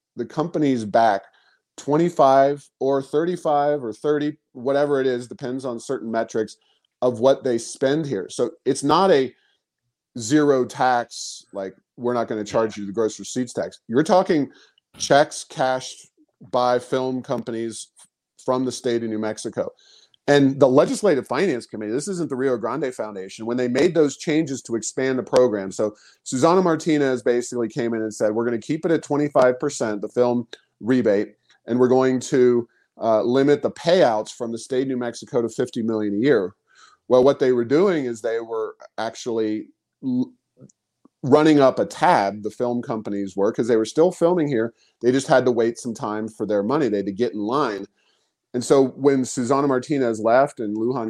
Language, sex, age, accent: English, male, 40-59, American